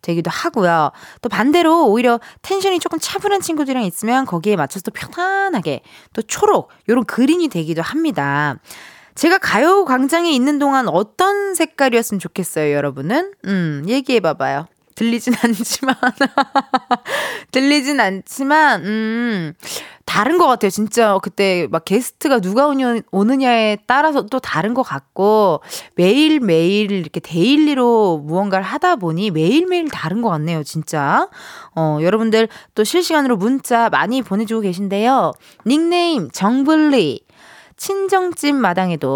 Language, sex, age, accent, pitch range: Korean, female, 20-39, native, 195-295 Hz